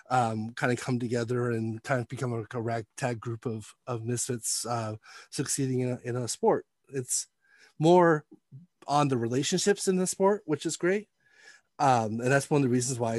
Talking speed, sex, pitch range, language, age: 190 wpm, male, 115-135 Hz, English, 30-49